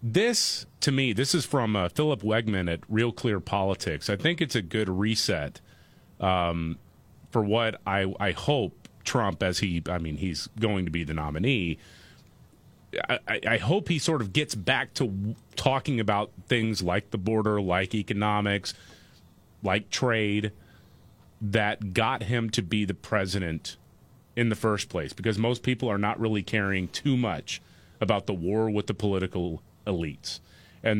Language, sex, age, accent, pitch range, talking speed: English, male, 30-49, American, 95-115 Hz, 165 wpm